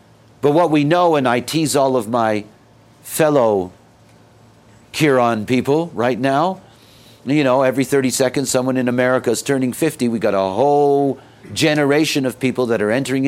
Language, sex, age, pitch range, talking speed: English, male, 50-69, 115-145 Hz, 165 wpm